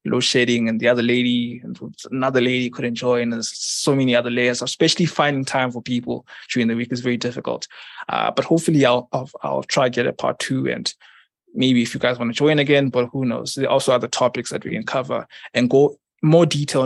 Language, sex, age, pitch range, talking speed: English, male, 20-39, 125-145 Hz, 230 wpm